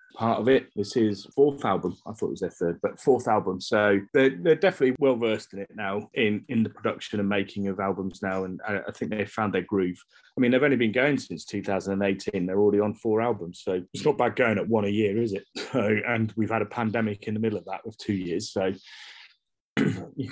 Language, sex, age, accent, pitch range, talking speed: English, male, 30-49, British, 100-125 Hz, 240 wpm